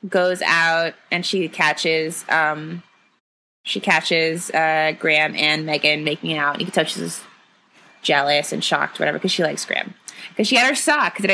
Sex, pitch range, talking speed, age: female, 180-235 Hz, 190 wpm, 20-39